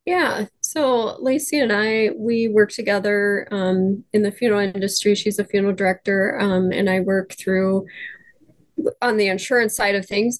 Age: 20-39